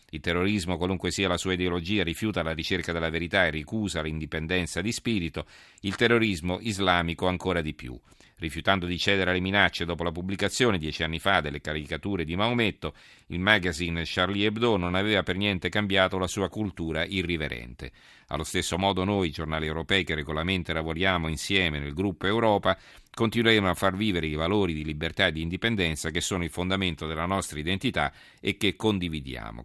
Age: 40-59